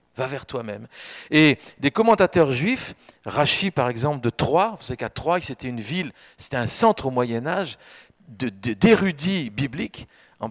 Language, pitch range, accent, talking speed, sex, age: French, 125-190 Hz, French, 155 wpm, male, 50-69